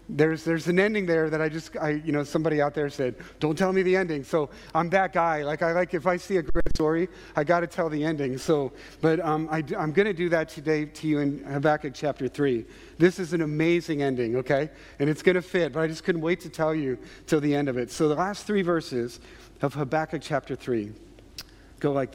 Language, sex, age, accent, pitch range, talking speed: English, male, 40-59, American, 140-165 Hz, 245 wpm